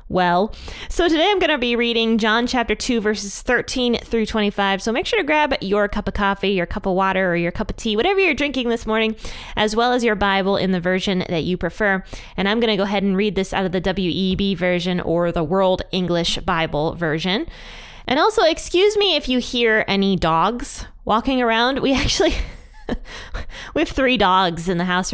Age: 20-39